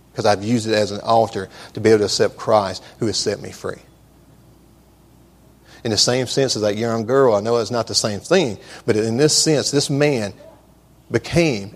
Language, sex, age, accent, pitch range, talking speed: English, male, 40-59, American, 115-165 Hz, 205 wpm